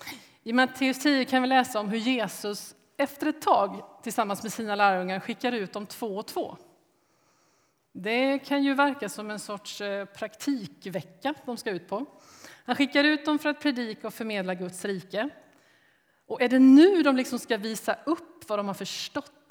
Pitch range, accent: 185-260 Hz, native